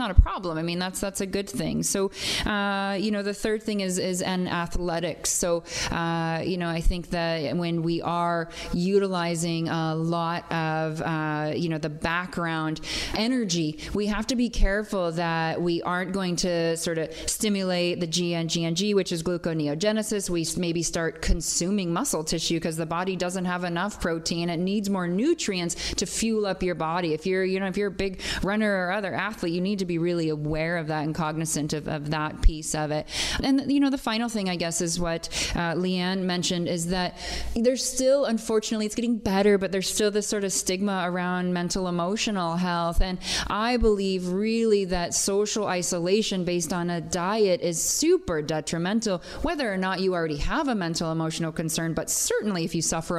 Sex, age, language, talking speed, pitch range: female, 30-49, English, 195 wpm, 165-195 Hz